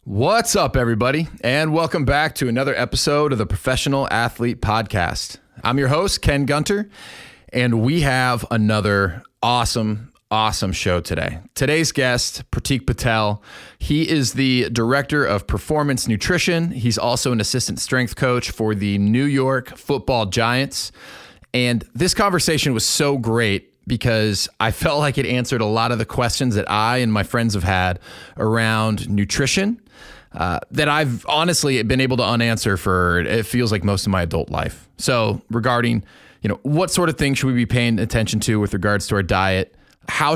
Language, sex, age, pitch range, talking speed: English, male, 30-49, 105-135 Hz, 170 wpm